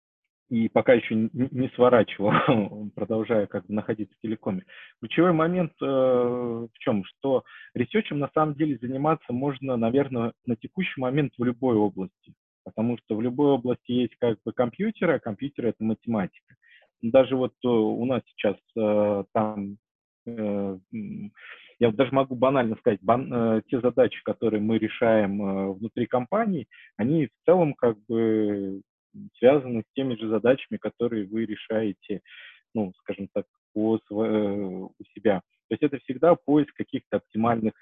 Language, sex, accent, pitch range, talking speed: Russian, male, native, 105-130 Hz, 150 wpm